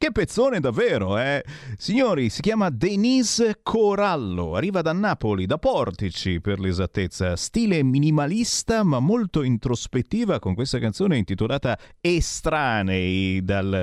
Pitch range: 100-145 Hz